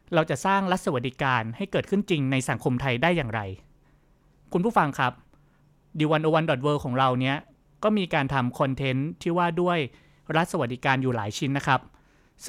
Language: Thai